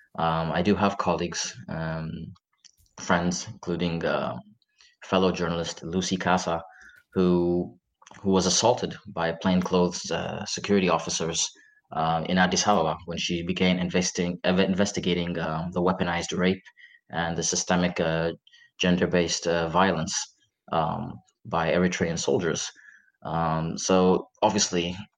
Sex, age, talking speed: male, 20-39, 115 wpm